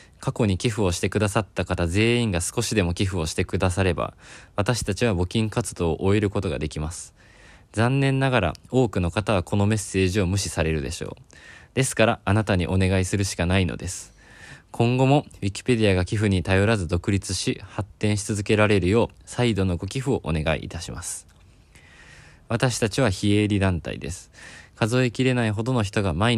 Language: Japanese